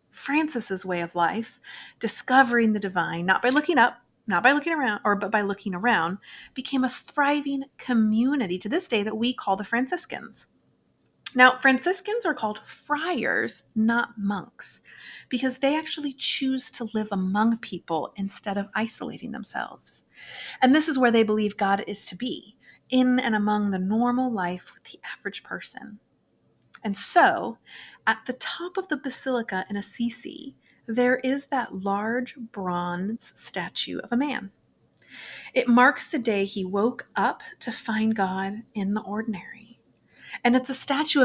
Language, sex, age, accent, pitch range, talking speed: English, female, 30-49, American, 210-270 Hz, 155 wpm